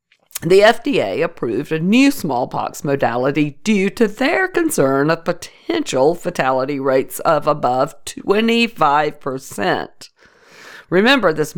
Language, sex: English, female